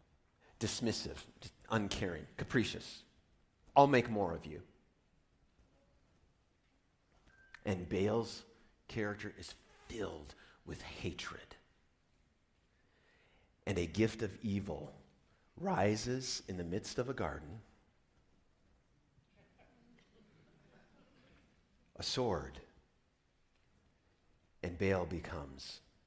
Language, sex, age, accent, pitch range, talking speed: English, male, 50-69, American, 80-110 Hz, 75 wpm